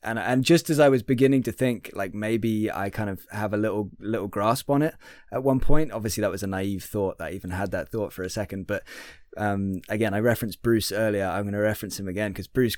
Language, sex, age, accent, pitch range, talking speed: English, male, 20-39, British, 95-115 Hz, 255 wpm